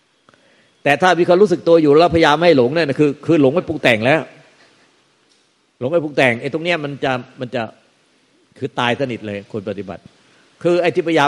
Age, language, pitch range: 60-79, Thai, 120-145 Hz